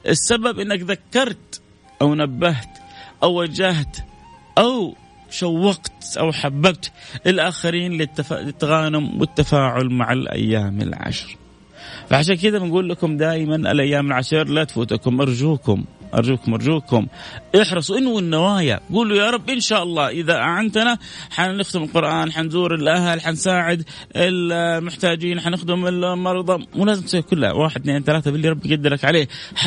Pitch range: 160-215 Hz